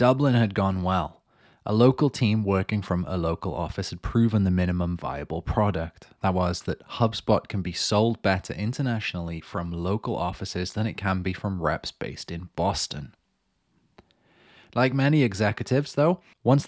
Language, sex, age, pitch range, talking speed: English, male, 20-39, 90-120 Hz, 160 wpm